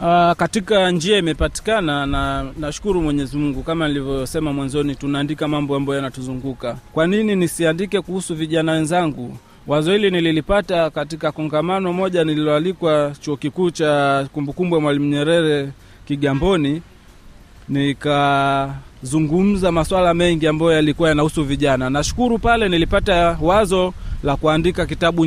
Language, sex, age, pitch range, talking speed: Swahili, male, 30-49, 145-180 Hz, 120 wpm